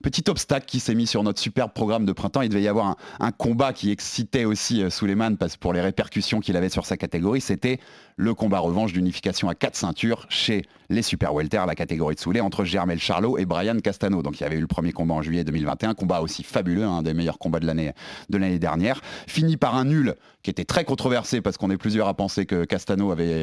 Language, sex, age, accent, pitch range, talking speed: French, male, 30-49, French, 95-120 Hz, 240 wpm